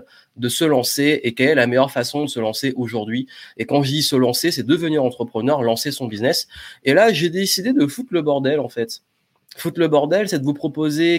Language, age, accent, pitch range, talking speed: French, 30-49, French, 125-155 Hz, 225 wpm